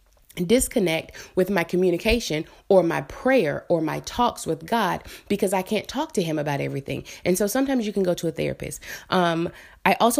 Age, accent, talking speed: 20-39, American, 190 wpm